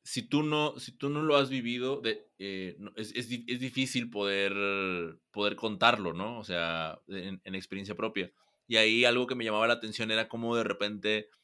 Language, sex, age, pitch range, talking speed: Spanish, male, 20-39, 95-115 Hz, 200 wpm